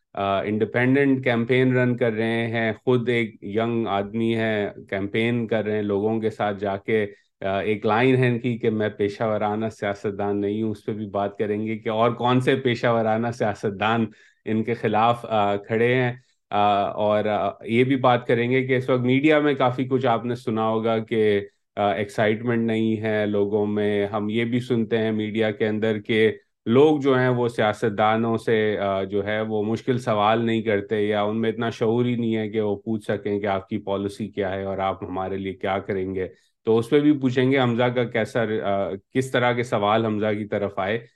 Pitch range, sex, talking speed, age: 105-125 Hz, male, 135 wpm, 30-49